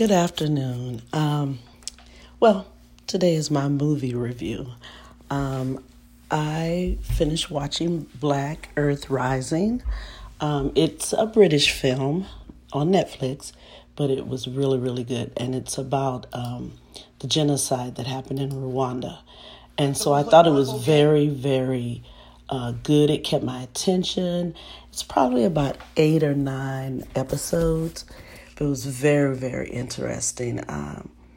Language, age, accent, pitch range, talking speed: English, 40-59, American, 125-150 Hz, 125 wpm